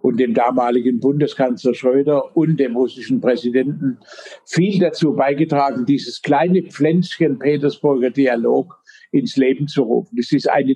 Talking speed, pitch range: 135 wpm, 130-160 Hz